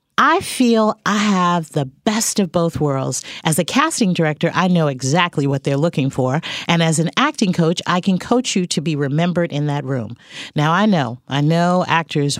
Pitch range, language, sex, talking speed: 150-220 Hz, English, female, 200 wpm